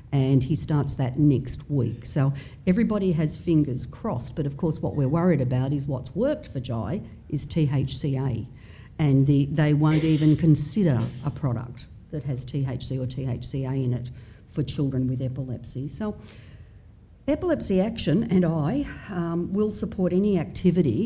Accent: Australian